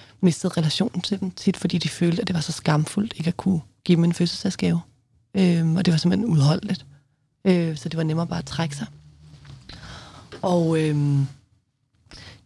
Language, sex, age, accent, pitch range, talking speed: Danish, female, 30-49, native, 150-195 Hz, 185 wpm